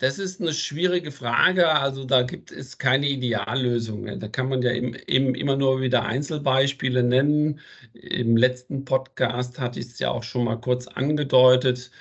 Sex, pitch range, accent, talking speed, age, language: male, 120-135 Hz, German, 170 wpm, 50-69, German